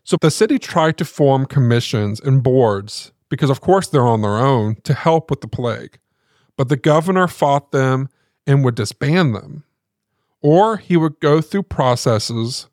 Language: English